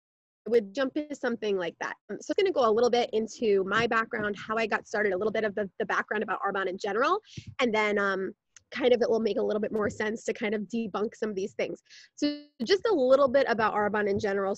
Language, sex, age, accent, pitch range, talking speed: English, female, 20-39, American, 205-250 Hz, 255 wpm